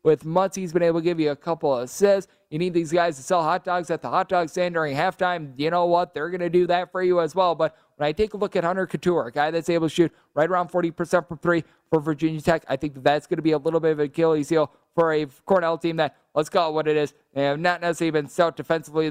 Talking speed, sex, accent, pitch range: 295 wpm, male, American, 155-175 Hz